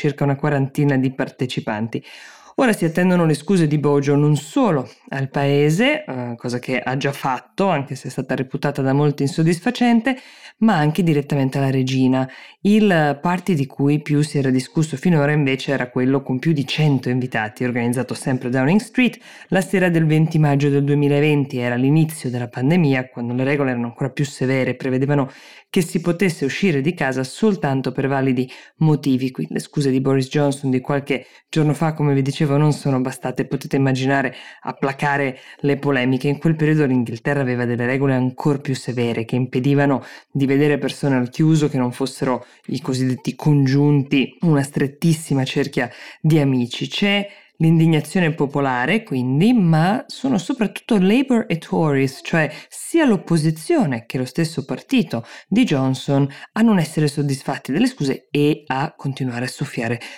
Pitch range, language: 130-160 Hz, Italian